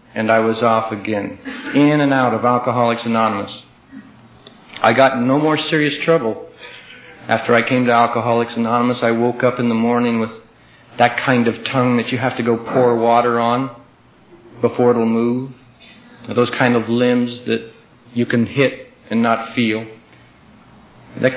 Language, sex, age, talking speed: English, male, 50-69, 165 wpm